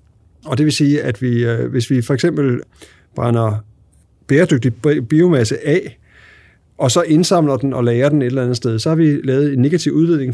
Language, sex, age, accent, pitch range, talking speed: Danish, male, 50-69, native, 115-150 Hz, 190 wpm